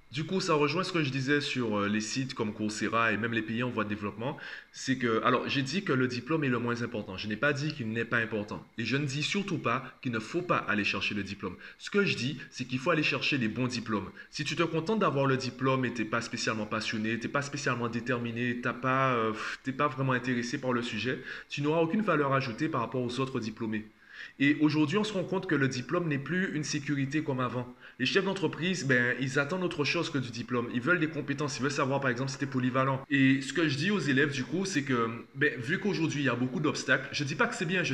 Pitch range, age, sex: 120-150 Hz, 20-39, male